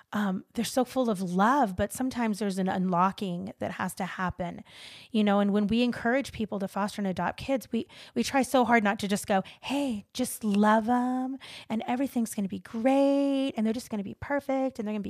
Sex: female